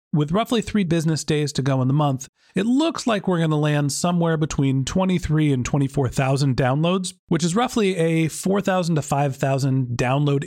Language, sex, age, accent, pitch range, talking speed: English, male, 40-59, American, 135-175 Hz, 180 wpm